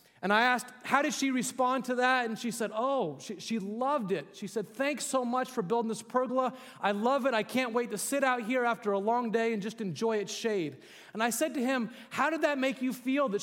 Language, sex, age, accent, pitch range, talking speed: English, male, 30-49, American, 200-250 Hz, 255 wpm